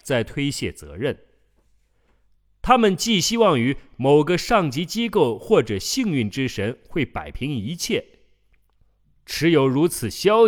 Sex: male